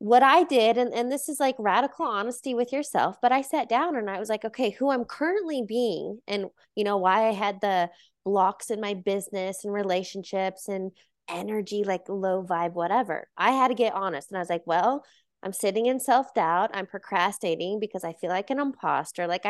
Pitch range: 200-255 Hz